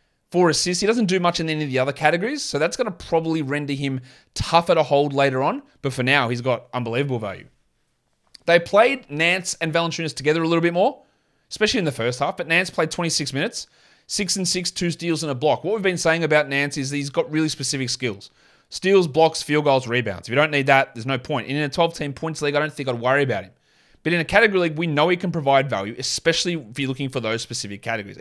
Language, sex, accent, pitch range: English, male, Australian, 125-165 Hz